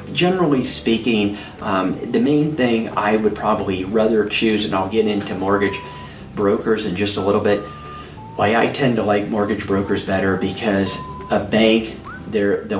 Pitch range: 100-115 Hz